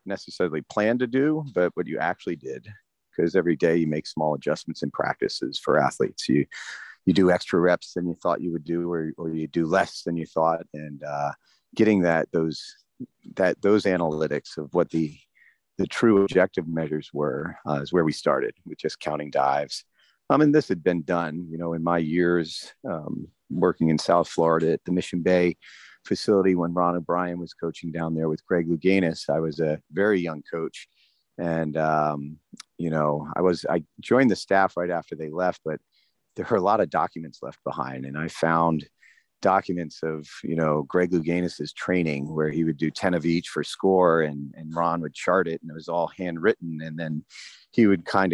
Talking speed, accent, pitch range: 195 wpm, American, 80-90 Hz